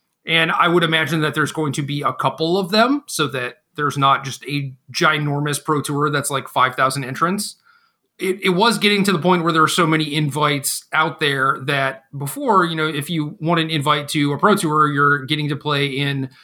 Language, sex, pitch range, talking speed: English, male, 140-165 Hz, 215 wpm